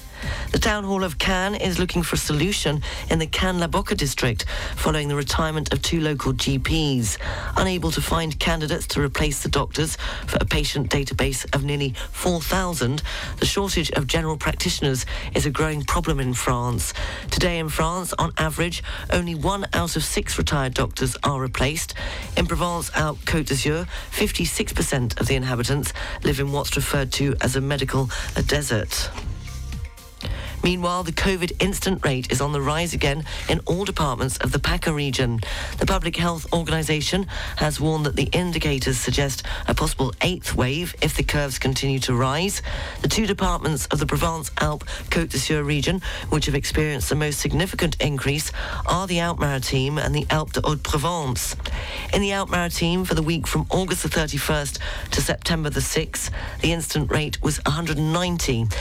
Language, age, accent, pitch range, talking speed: English, 40-59, British, 130-165 Hz, 160 wpm